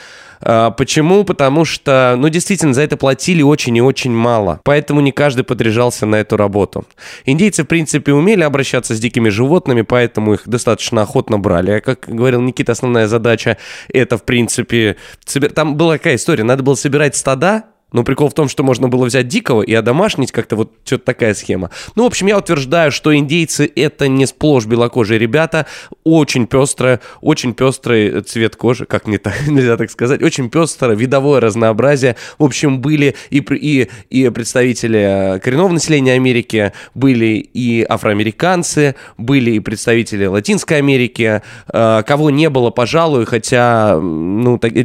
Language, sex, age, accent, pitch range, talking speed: Russian, male, 20-39, native, 115-145 Hz, 160 wpm